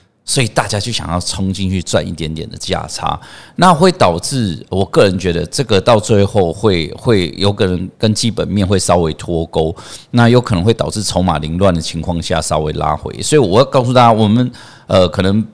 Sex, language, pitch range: male, Chinese, 90-120 Hz